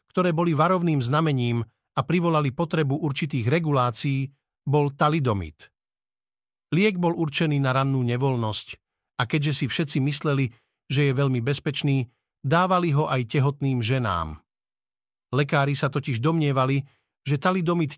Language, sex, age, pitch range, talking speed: Slovak, male, 50-69, 130-150 Hz, 125 wpm